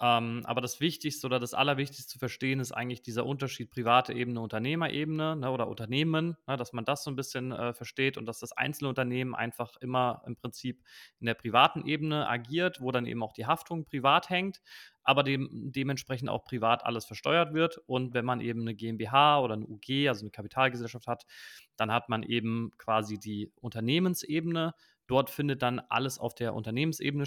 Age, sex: 30-49, male